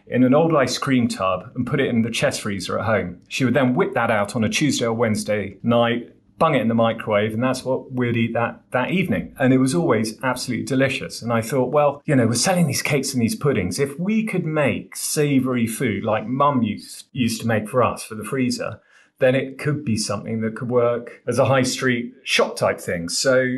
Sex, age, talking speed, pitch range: male, 30-49, 235 wpm, 110-130 Hz